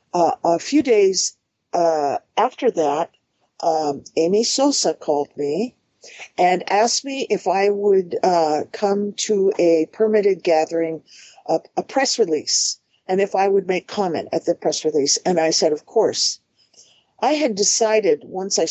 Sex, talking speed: female, 155 wpm